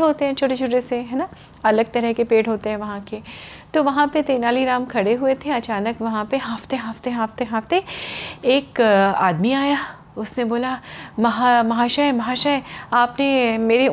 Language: Hindi